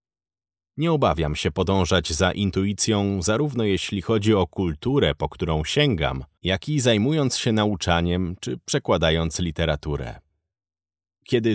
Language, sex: Polish, male